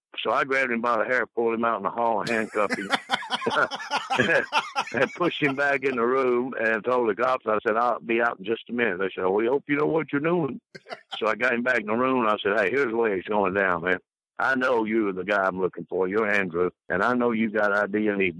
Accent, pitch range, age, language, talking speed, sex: American, 105-130 Hz, 60-79, English, 275 wpm, male